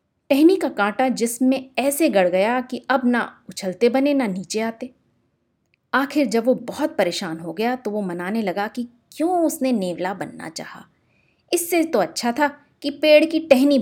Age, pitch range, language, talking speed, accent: 30-49, 195-275 Hz, Hindi, 175 wpm, native